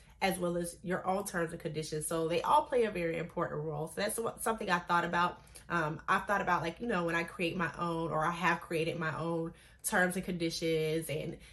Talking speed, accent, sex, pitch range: 230 wpm, American, female, 165-195 Hz